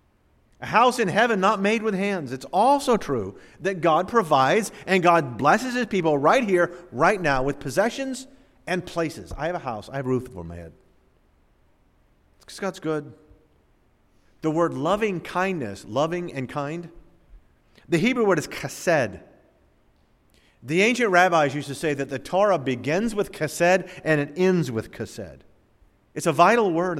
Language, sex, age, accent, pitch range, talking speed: English, male, 50-69, American, 120-185 Hz, 165 wpm